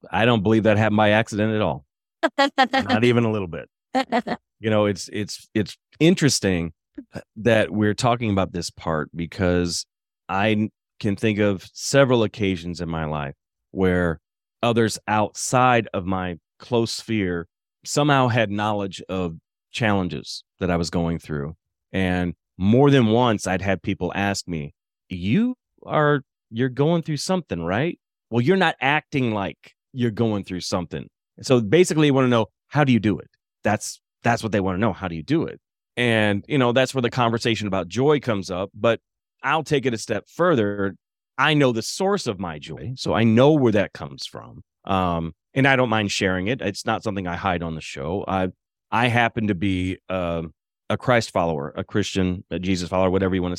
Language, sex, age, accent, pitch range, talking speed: English, male, 30-49, American, 90-125 Hz, 185 wpm